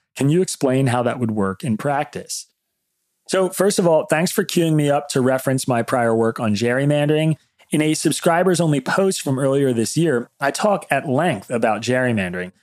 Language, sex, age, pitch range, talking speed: English, male, 30-49, 115-150 Hz, 185 wpm